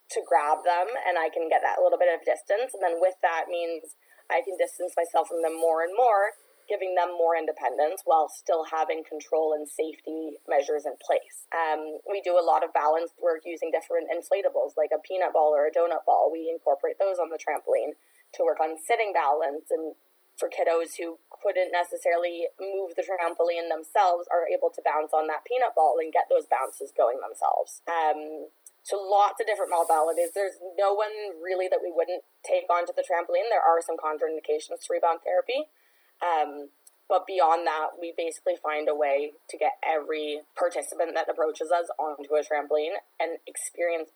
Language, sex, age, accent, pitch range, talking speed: English, female, 20-39, American, 155-205 Hz, 185 wpm